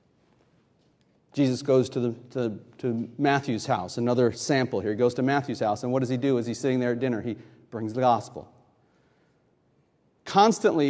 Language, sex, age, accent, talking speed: English, male, 40-59, American, 165 wpm